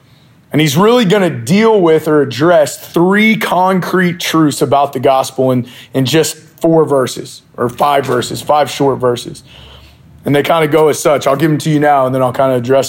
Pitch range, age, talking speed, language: 130-160 Hz, 30-49, 210 wpm, English